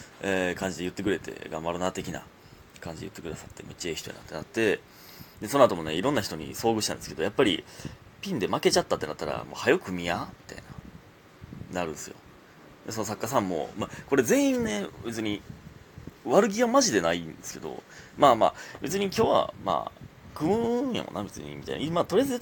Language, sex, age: Japanese, male, 30-49